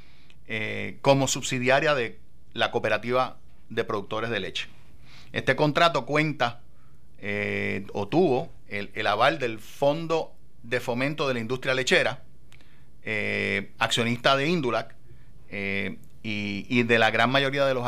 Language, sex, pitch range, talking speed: English, male, 115-140 Hz, 135 wpm